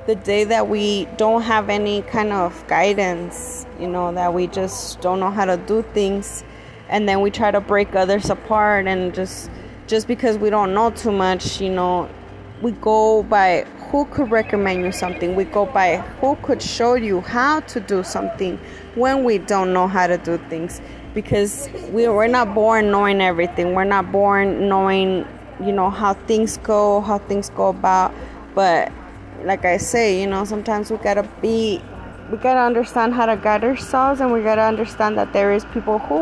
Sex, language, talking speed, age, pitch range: female, English, 185 wpm, 20-39, 185-220 Hz